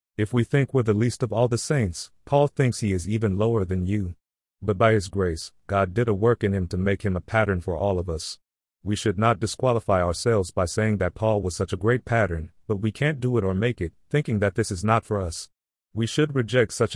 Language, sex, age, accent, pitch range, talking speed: English, male, 40-59, American, 95-115 Hz, 250 wpm